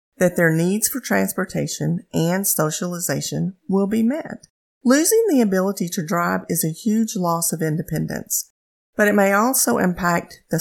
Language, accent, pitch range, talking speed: English, American, 145-185 Hz, 155 wpm